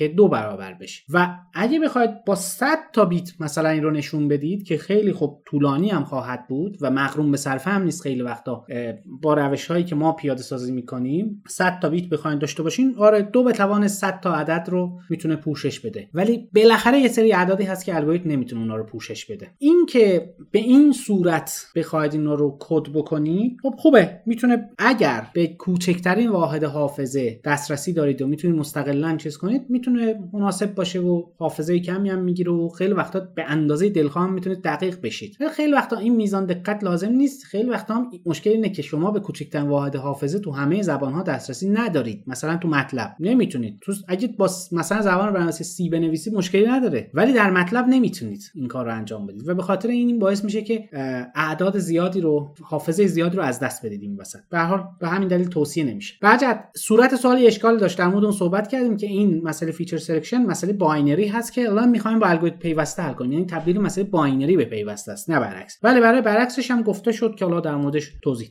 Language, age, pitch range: Persian, 30-49, 150-210 Hz